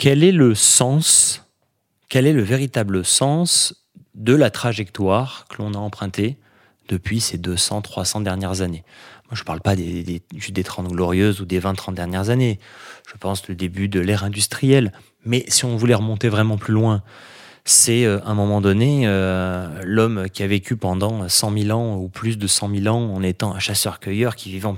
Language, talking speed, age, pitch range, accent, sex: French, 195 wpm, 30-49, 100-135 Hz, French, male